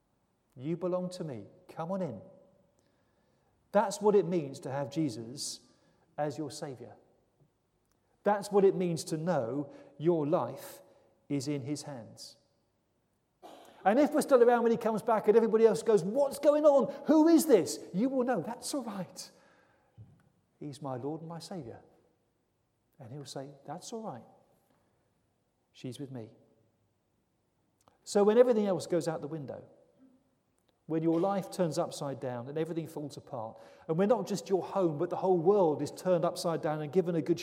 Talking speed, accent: 170 wpm, British